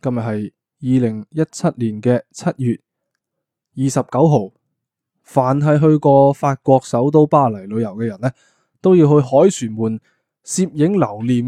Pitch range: 115-145 Hz